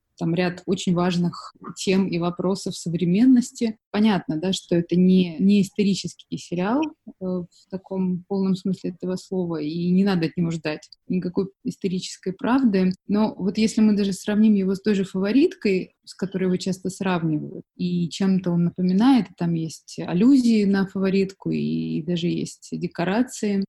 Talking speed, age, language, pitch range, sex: 150 wpm, 20-39, Russian, 180-220 Hz, female